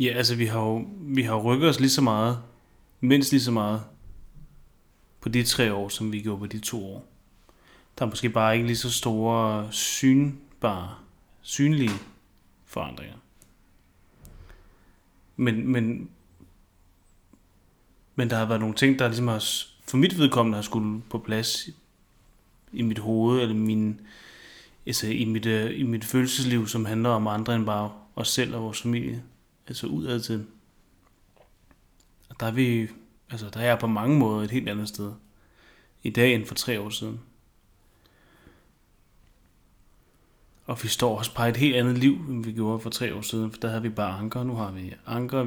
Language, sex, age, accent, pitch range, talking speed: English, male, 30-49, Danish, 105-120 Hz, 170 wpm